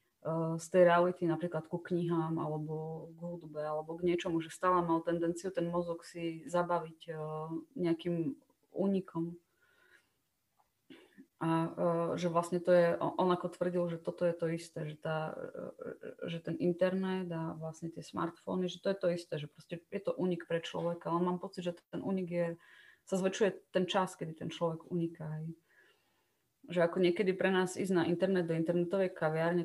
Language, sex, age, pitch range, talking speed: Slovak, female, 20-39, 160-175 Hz, 175 wpm